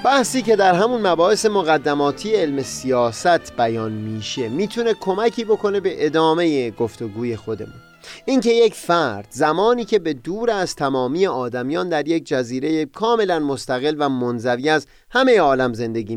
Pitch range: 125-210 Hz